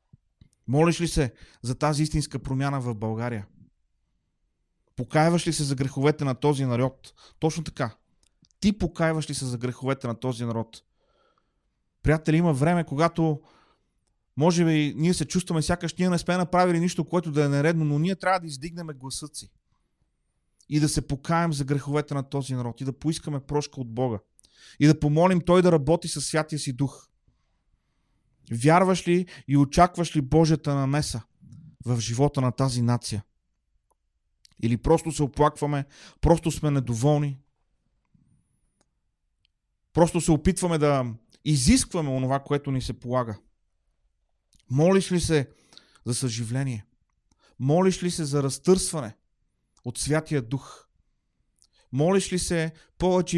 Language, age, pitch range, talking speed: Bulgarian, 30-49, 130-165 Hz, 140 wpm